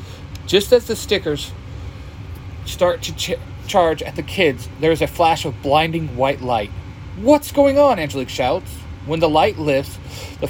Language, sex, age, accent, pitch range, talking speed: English, male, 30-49, American, 95-155 Hz, 165 wpm